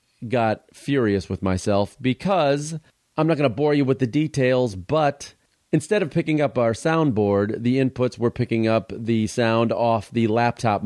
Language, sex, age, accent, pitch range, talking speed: English, male, 40-59, American, 105-135 Hz, 170 wpm